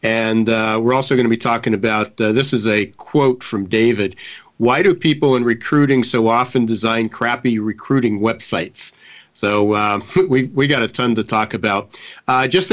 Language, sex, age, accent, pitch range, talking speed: English, male, 50-69, American, 105-125 Hz, 185 wpm